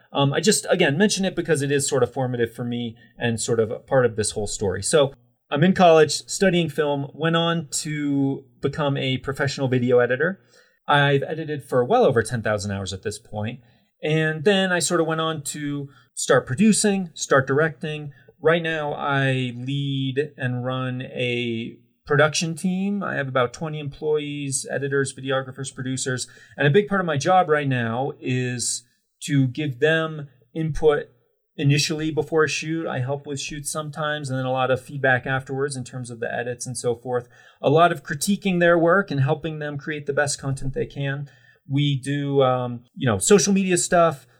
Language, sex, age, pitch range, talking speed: English, male, 30-49, 130-155 Hz, 185 wpm